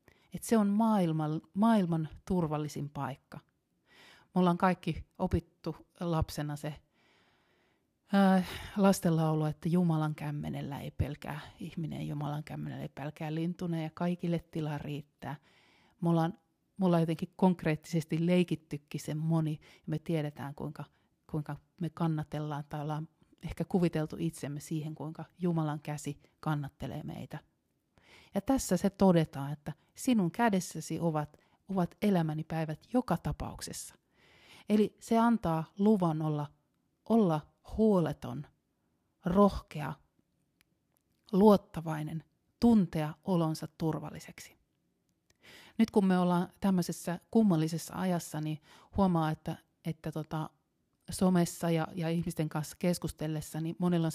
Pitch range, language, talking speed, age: 155-180 Hz, Finnish, 115 wpm, 30-49